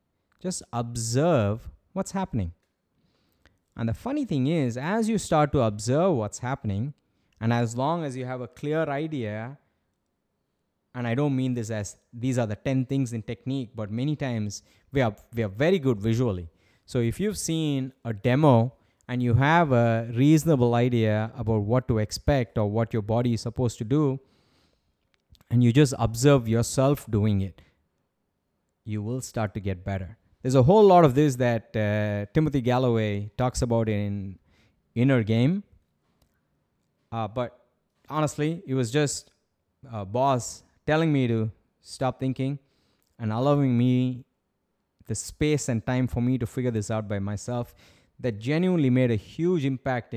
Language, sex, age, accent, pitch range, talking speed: English, male, 20-39, Indian, 110-135 Hz, 160 wpm